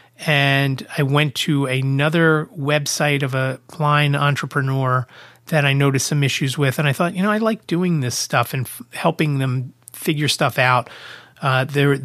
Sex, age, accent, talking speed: male, 30-49, American, 175 wpm